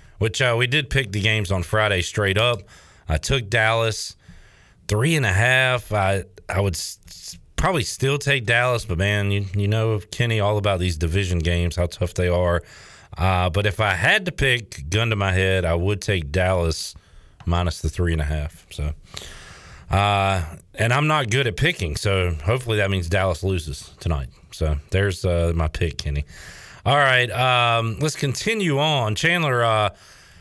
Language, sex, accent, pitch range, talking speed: English, male, American, 90-120 Hz, 180 wpm